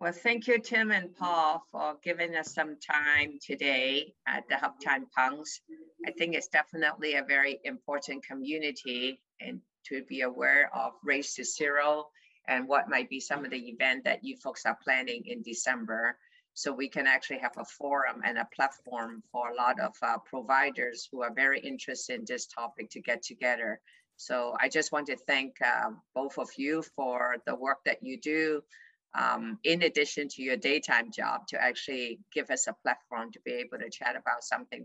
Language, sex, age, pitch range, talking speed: English, female, 50-69, 135-180 Hz, 190 wpm